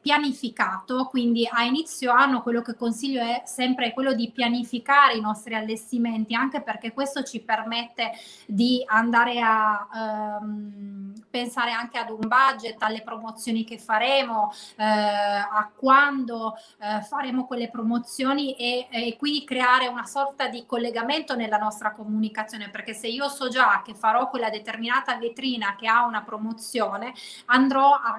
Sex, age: female, 20-39